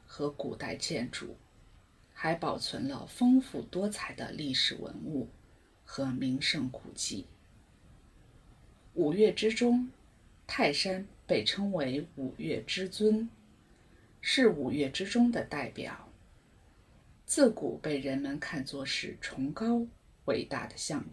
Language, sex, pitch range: English, female, 145-240 Hz